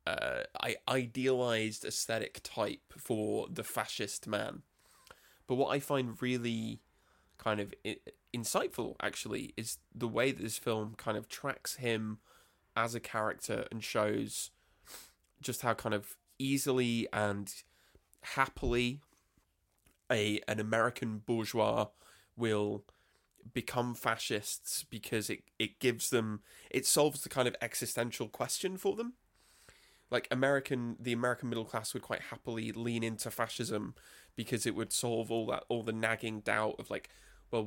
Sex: male